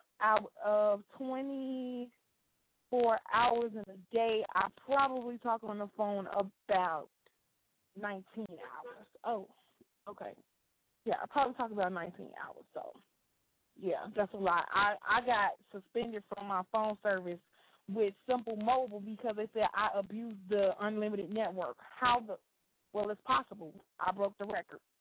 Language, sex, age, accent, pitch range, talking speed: English, female, 20-39, American, 210-250 Hz, 140 wpm